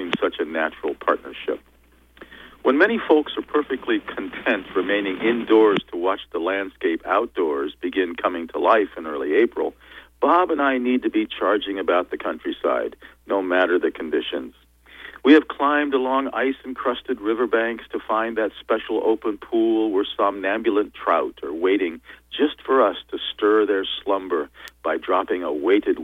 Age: 50-69